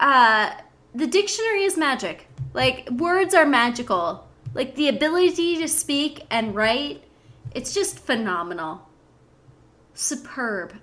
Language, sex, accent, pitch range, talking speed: English, female, American, 210-315 Hz, 110 wpm